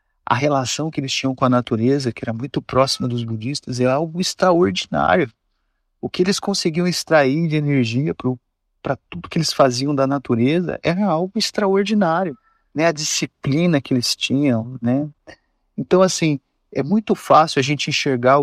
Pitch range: 135-175 Hz